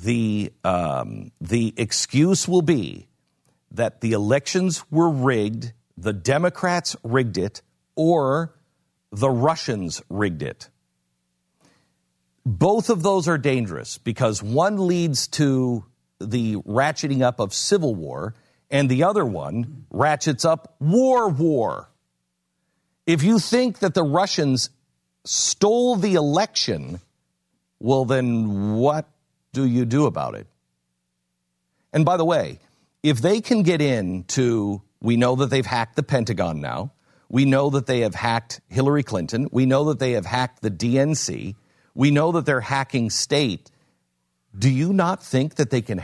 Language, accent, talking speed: English, American, 140 wpm